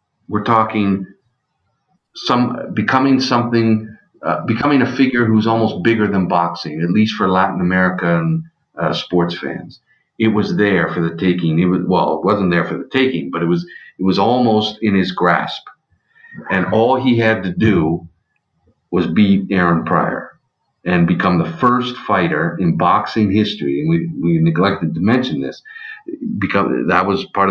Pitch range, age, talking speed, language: 95-125 Hz, 50-69, 165 wpm, English